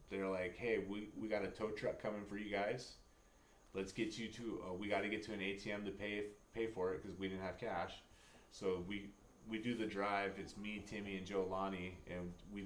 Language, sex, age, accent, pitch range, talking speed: English, male, 30-49, American, 90-105 Hz, 230 wpm